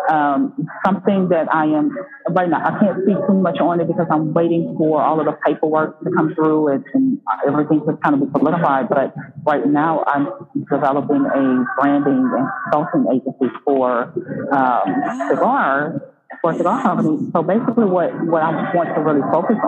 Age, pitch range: 40-59, 150-195 Hz